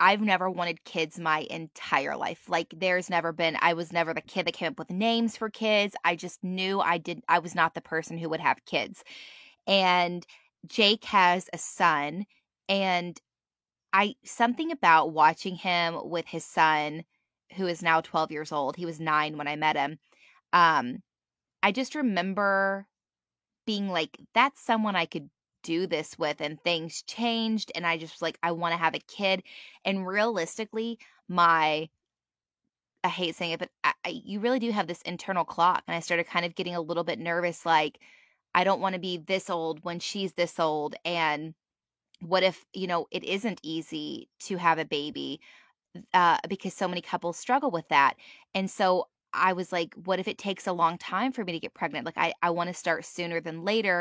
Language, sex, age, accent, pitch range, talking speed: English, female, 20-39, American, 165-195 Hz, 195 wpm